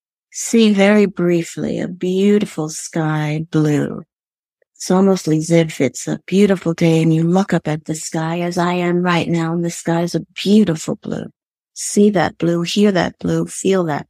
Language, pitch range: English, 165-210 Hz